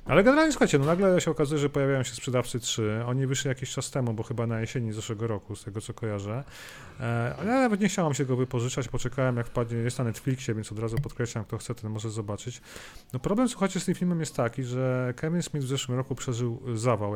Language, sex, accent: Polish, male, native